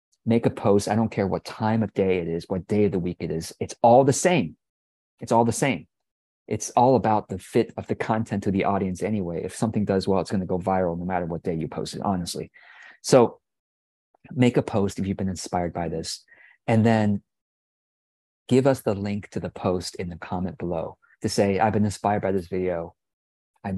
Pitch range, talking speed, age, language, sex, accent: 90-105 Hz, 220 wpm, 30-49, English, male, American